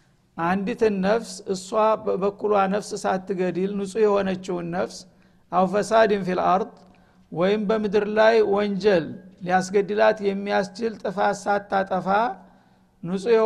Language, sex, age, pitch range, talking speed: Amharic, male, 60-79, 180-210 Hz, 90 wpm